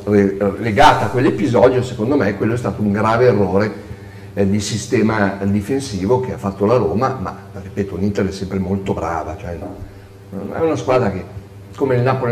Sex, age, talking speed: male, 50-69, 180 wpm